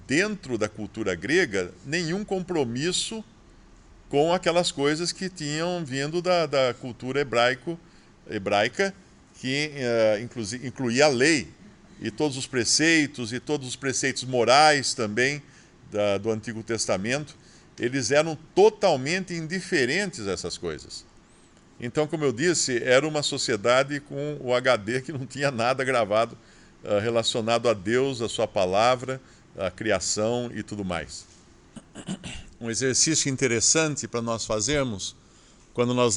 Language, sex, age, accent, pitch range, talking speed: English, male, 50-69, Brazilian, 115-145 Hz, 130 wpm